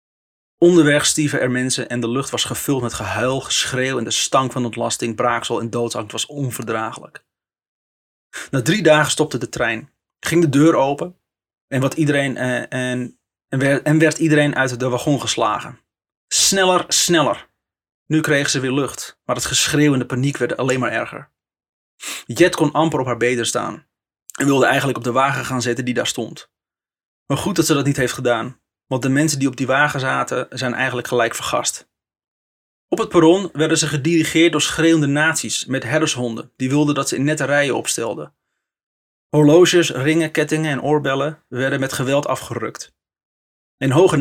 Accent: Dutch